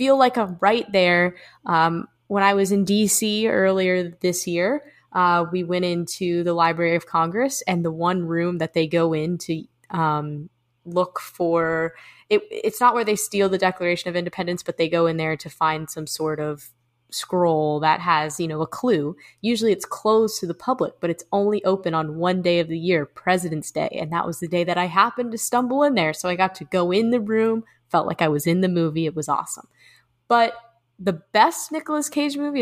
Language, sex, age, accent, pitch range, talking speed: English, female, 20-39, American, 165-210 Hz, 210 wpm